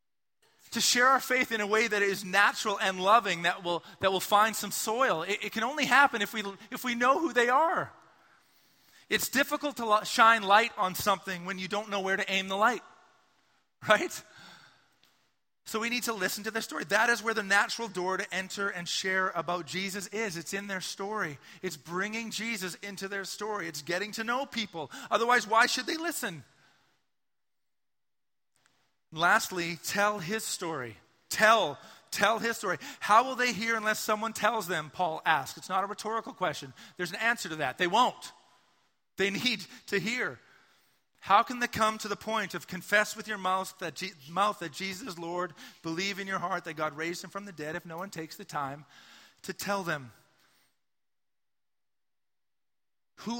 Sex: male